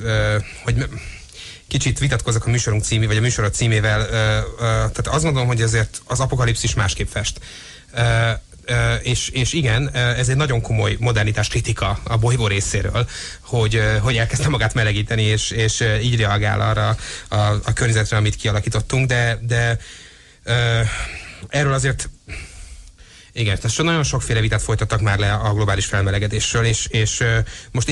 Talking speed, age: 160 wpm, 30-49